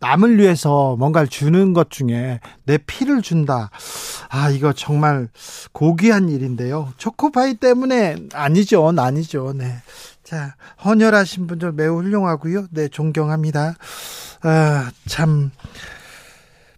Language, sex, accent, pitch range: Korean, male, native, 150-195 Hz